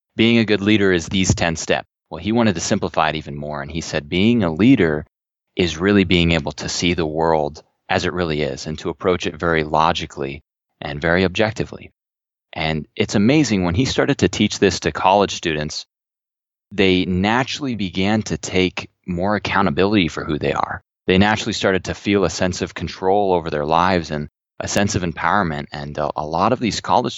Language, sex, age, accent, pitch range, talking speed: English, male, 20-39, American, 80-100 Hz, 200 wpm